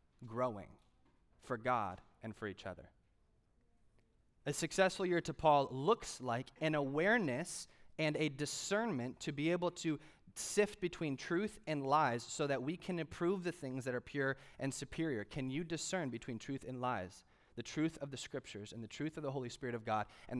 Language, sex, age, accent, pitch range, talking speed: English, male, 30-49, American, 115-155 Hz, 180 wpm